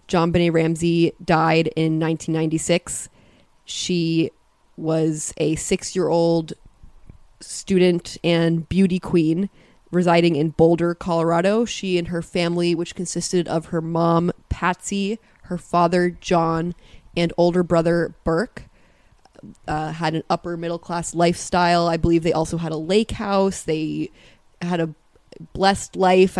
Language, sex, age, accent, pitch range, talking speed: English, female, 20-39, American, 165-185 Hz, 125 wpm